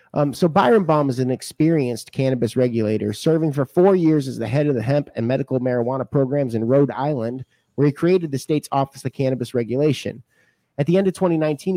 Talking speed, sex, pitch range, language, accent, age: 205 wpm, male, 120-150 Hz, English, American, 30-49